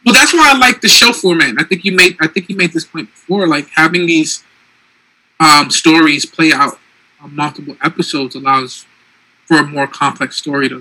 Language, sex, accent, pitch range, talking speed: English, male, American, 140-170 Hz, 200 wpm